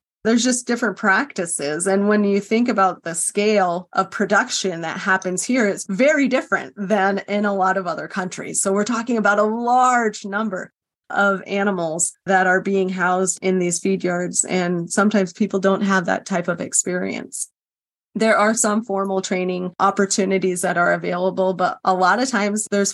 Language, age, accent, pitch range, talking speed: English, 30-49, American, 185-215 Hz, 175 wpm